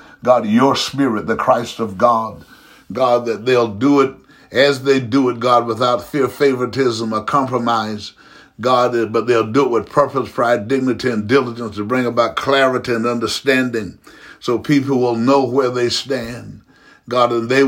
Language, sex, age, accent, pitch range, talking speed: English, male, 60-79, American, 120-140 Hz, 165 wpm